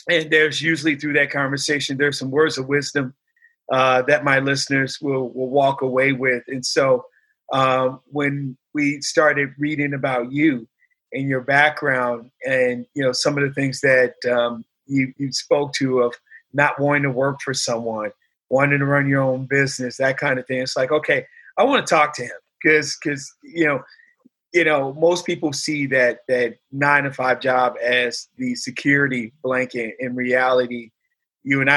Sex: male